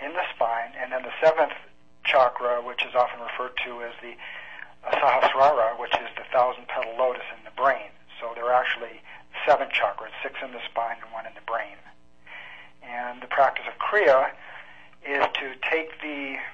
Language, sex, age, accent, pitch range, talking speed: English, male, 50-69, American, 120-135 Hz, 175 wpm